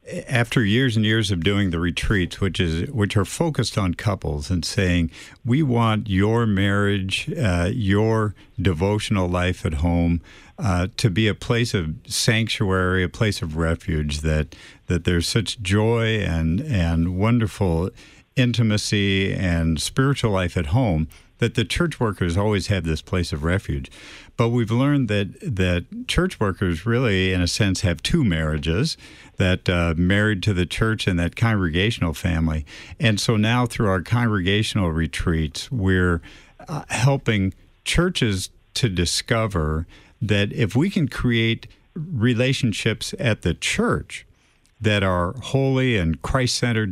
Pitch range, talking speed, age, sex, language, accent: 90-115 Hz, 145 wpm, 60-79, male, English, American